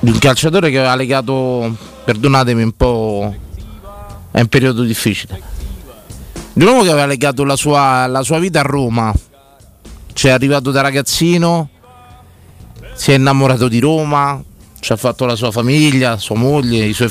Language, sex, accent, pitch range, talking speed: Italian, male, native, 115-140 Hz, 150 wpm